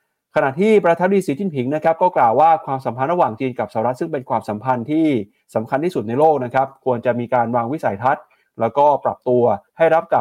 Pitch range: 115-150 Hz